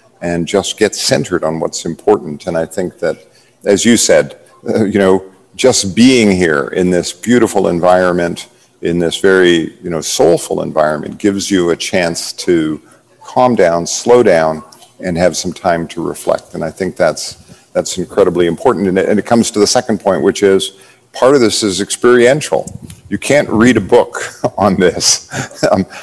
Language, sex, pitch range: English, male, 85-105 Hz